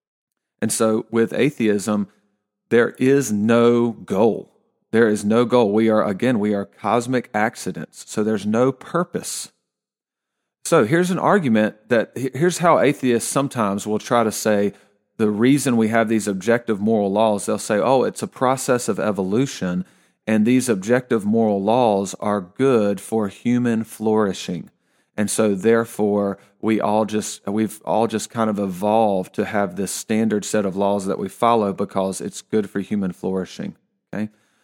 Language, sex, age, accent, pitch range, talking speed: English, male, 40-59, American, 100-120 Hz, 160 wpm